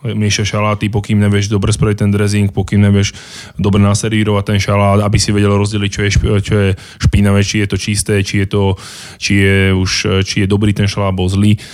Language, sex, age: Slovak, male, 20-39